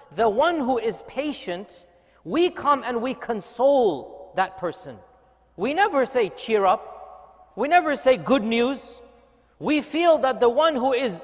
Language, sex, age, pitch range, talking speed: English, male, 40-59, 215-270 Hz, 155 wpm